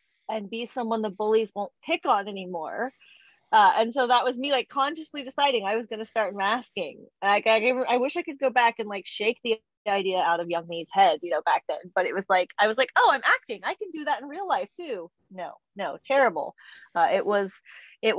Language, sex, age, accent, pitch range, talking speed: English, female, 30-49, American, 180-240 Hz, 235 wpm